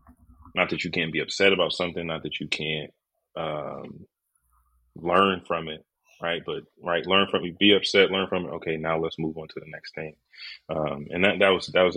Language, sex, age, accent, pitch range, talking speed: English, male, 30-49, American, 80-85 Hz, 215 wpm